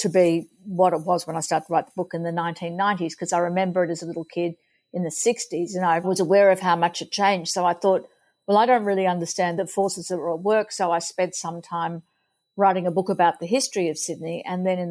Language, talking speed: English, 260 wpm